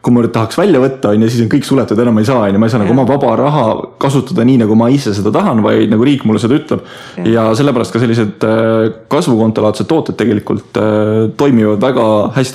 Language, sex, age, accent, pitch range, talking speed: English, male, 20-39, Finnish, 110-130 Hz, 185 wpm